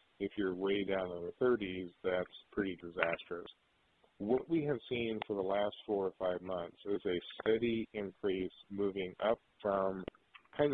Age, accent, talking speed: 50-69, American, 160 wpm